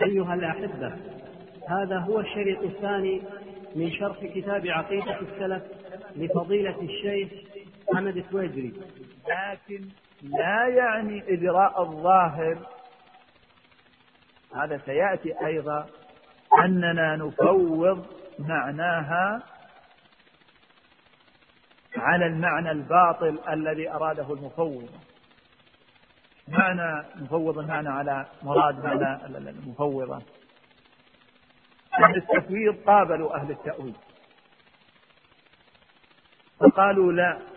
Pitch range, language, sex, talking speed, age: 155-195 Hz, Arabic, male, 75 wpm, 50-69